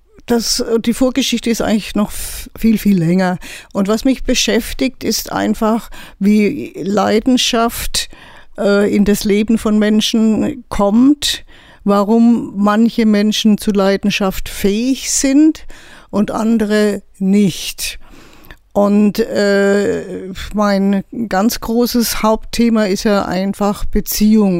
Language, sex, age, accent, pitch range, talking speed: German, female, 50-69, German, 195-225 Hz, 100 wpm